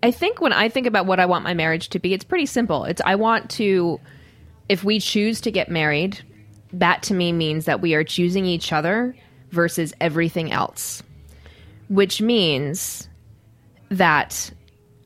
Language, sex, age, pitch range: English, female, 20-39, 155-200 Hz